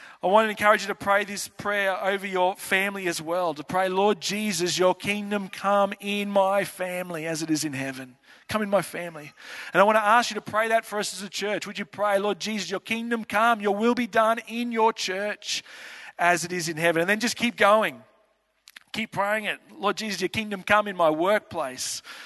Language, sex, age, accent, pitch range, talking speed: English, male, 40-59, Australian, 190-220 Hz, 225 wpm